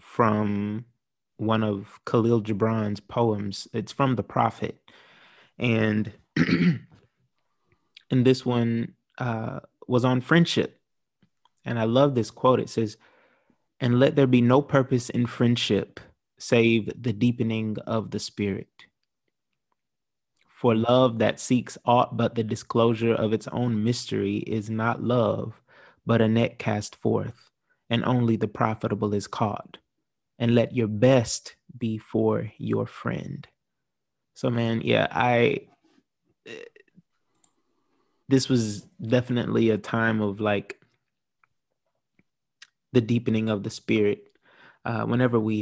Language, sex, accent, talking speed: English, male, American, 120 wpm